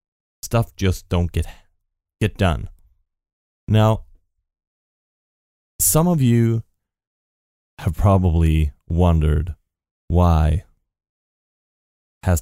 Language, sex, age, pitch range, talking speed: English, male, 20-39, 80-105 Hz, 70 wpm